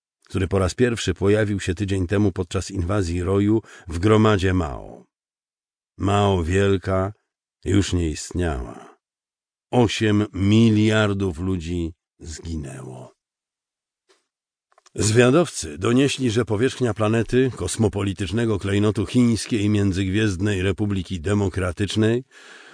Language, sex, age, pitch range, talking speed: Polish, male, 50-69, 90-110 Hz, 90 wpm